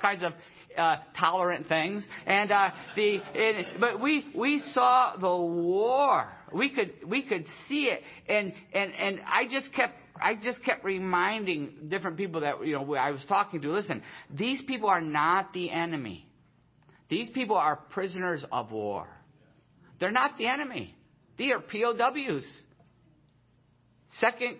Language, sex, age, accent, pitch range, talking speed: English, male, 50-69, American, 170-225 Hz, 150 wpm